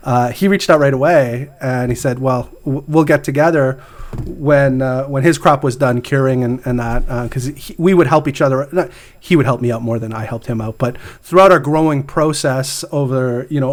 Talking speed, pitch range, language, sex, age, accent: 220 wpm, 125-160 Hz, English, male, 30-49, American